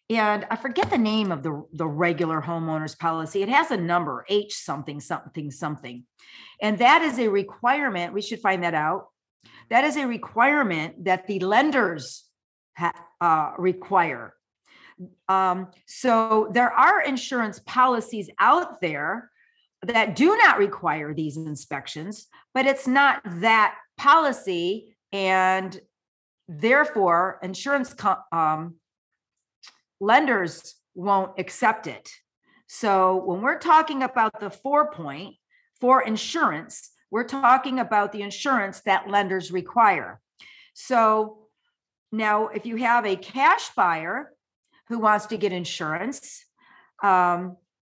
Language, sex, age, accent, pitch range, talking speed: English, female, 50-69, American, 180-240 Hz, 125 wpm